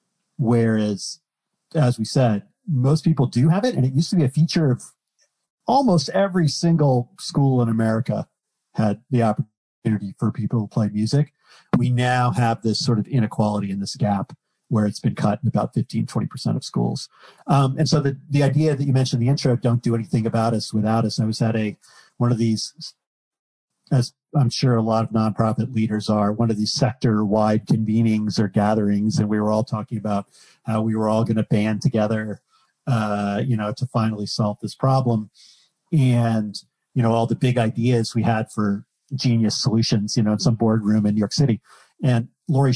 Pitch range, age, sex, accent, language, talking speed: 110-135 Hz, 50-69, male, American, English, 195 wpm